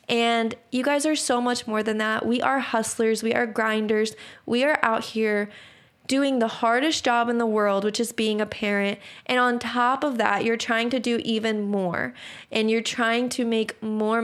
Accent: American